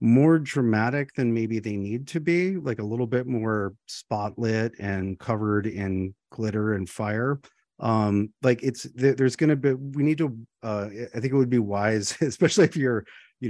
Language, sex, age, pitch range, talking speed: English, male, 30-49, 100-120 Hz, 180 wpm